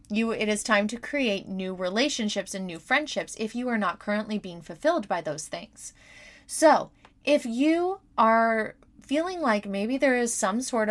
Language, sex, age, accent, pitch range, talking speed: English, female, 20-39, American, 195-245 Hz, 175 wpm